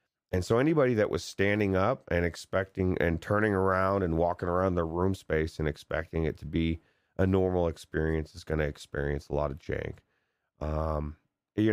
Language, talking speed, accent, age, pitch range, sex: English, 185 wpm, American, 30-49, 80-100 Hz, male